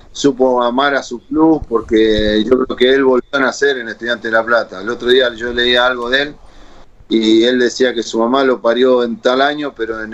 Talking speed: 230 wpm